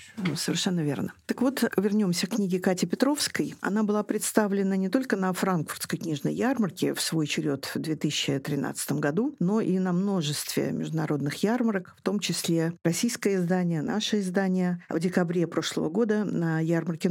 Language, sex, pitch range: Russian, female, 165-215 Hz